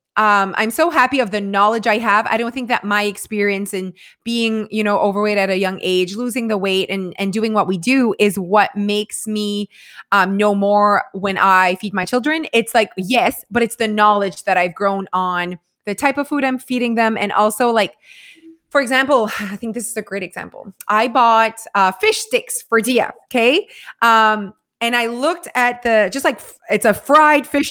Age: 20-39